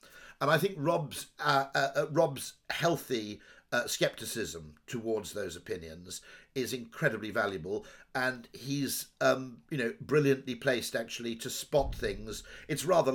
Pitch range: 115-160 Hz